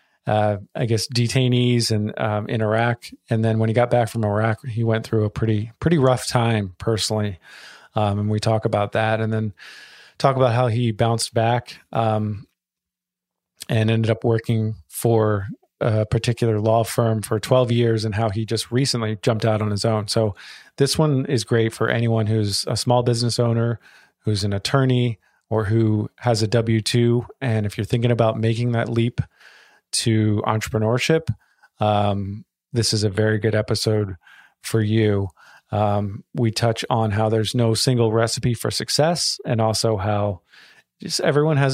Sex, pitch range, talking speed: male, 110-120 Hz, 170 wpm